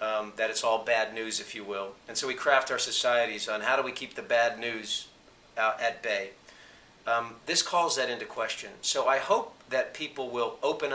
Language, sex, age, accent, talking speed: English, male, 50-69, American, 215 wpm